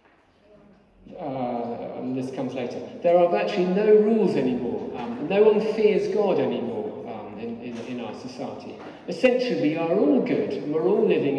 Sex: male